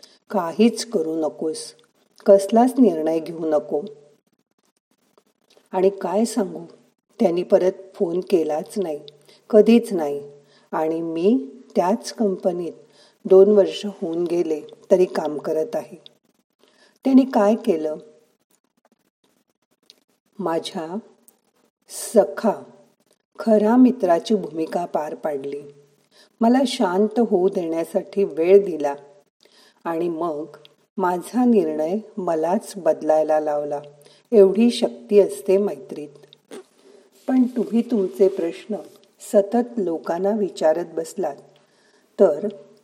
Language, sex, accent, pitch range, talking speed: Marathi, female, native, 170-215 Hz, 85 wpm